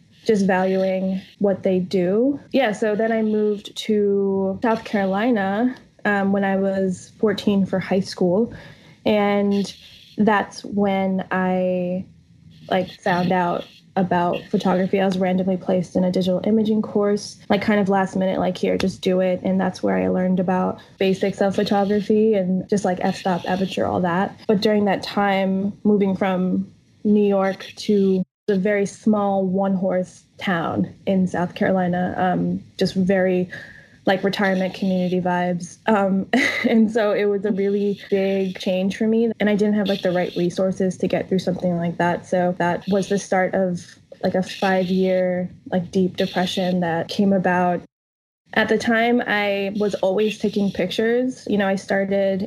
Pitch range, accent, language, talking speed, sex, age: 185-205 Hz, American, English, 165 wpm, female, 10-29